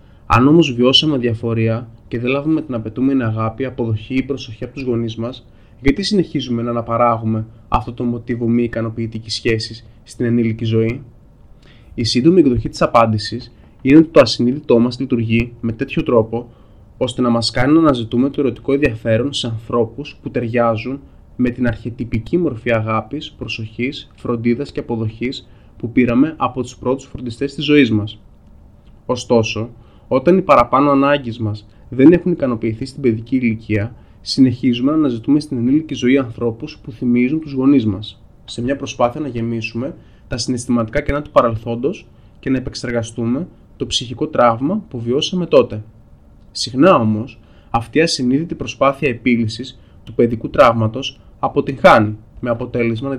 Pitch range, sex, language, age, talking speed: 115-135 Hz, male, Greek, 20-39, 150 wpm